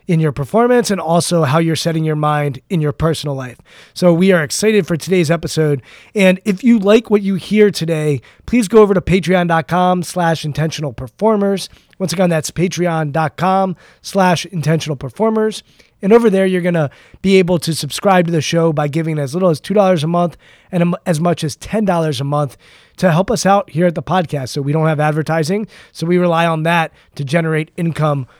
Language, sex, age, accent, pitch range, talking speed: English, male, 20-39, American, 150-185 Hz, 195 wpm